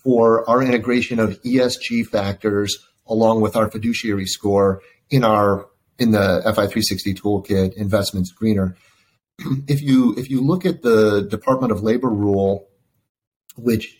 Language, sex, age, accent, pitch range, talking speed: English, male, 30-49, American, 100-115 Hz, 150 wpm